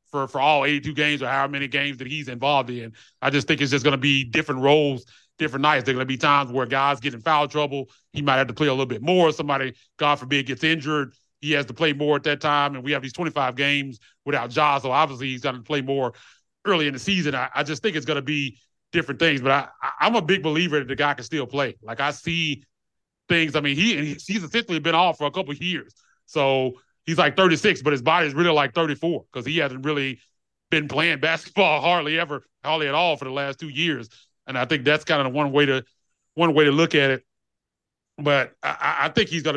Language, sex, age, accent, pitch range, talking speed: English, male, 30-49, American, 130-155 Hz, 255 wpm